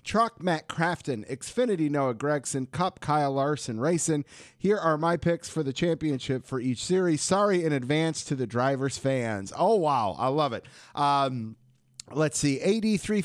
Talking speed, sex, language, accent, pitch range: 170 wpm, male, English, American, 130-175 Hz